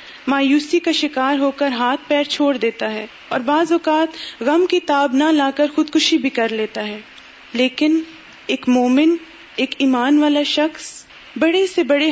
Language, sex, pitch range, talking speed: Urdu, female, 260-320 Hz, 175 wpm